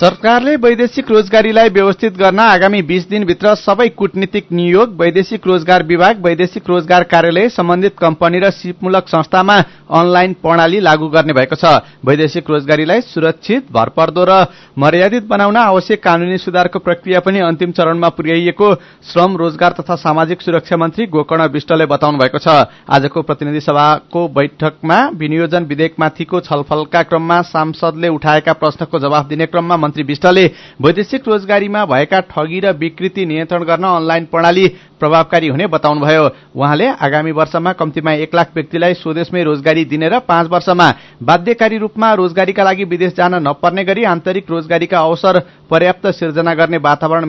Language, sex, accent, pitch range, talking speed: English, male, Indian, 160-190 Hz, 105 wpm